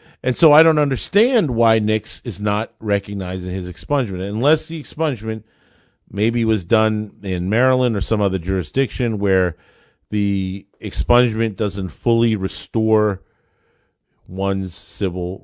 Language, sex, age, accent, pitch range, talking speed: English, male, 50-69, American, 95-115 Hz, 125 wpm